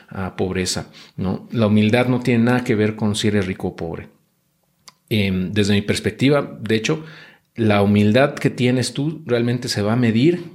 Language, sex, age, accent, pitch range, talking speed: Spanish, male, 40-59, Mexican, 105-130 Hz, 180 wpm